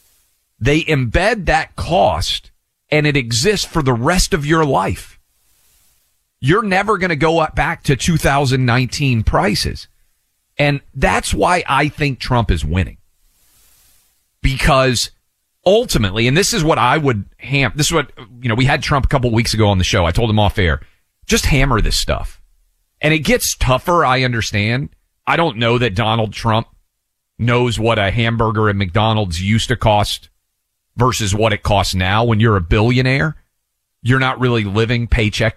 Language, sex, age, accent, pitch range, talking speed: English, male, 40-59, American, 105-135 Hz, 170 wpm